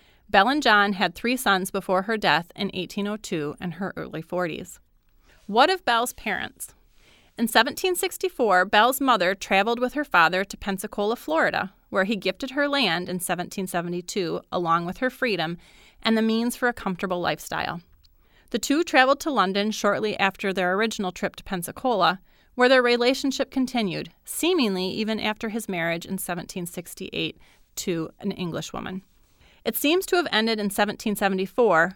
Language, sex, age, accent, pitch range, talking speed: English, female, 30-49, American, 180-245 Hz, 150 wpm